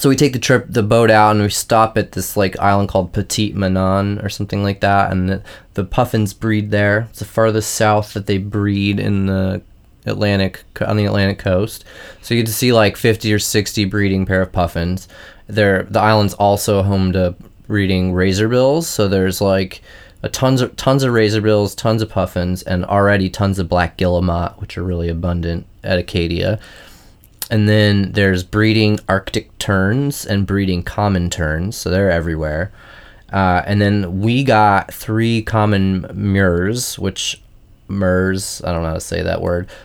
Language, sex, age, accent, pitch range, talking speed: English, male, 20-39, American, 90-110 Hz, 180 wpm